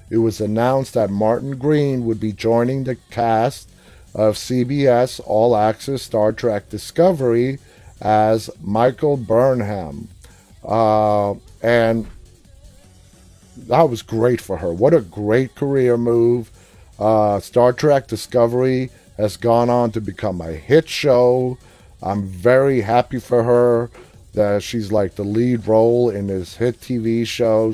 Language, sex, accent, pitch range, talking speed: English, male, American, 105-125 Hz, 130 wpm